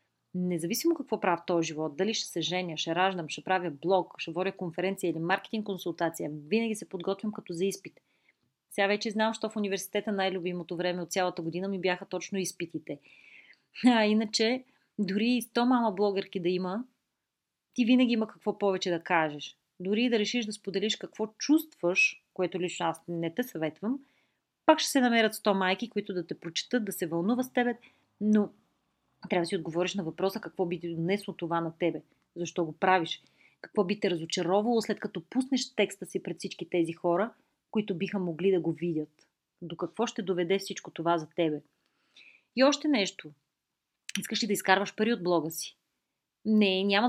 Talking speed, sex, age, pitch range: 185 wpm, female, 30-49, 175-215 Hz